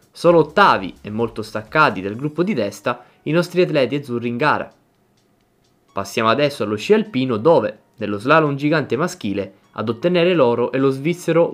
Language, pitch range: Italian, 105-170 Hz